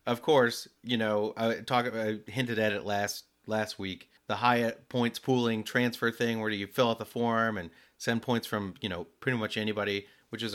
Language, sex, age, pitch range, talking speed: English, male, 30-49, 100-120 Hz, 210 wpm